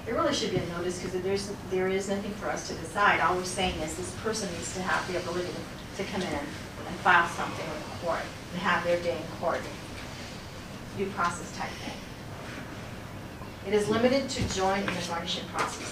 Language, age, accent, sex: English, 40-59, American, female